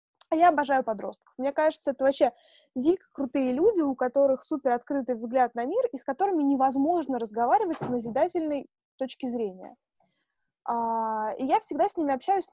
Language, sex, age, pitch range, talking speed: Russian, female, 20-39, 245-300 Hz, 160 wpm